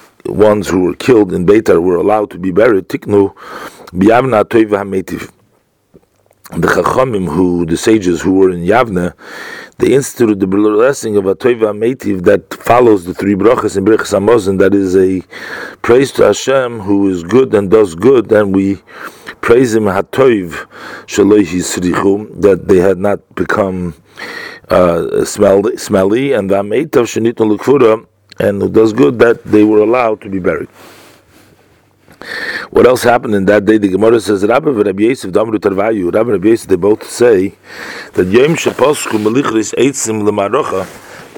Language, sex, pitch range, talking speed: English, male, 95-110 Hz, 135 wpm